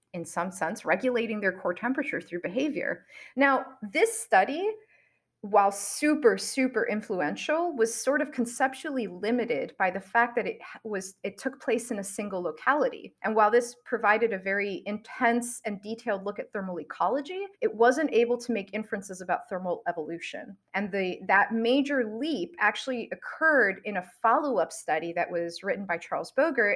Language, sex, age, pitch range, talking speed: English, female, 30-49, 190-260 Hz, 165 wpm